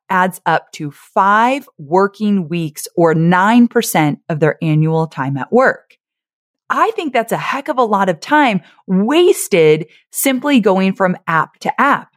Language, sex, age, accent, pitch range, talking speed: English, female, 30-49, American, 170-245 Hz, 155 wpm